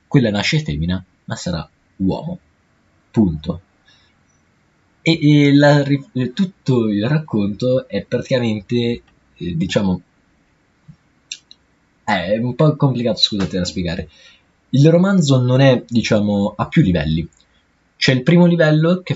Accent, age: native, 20-39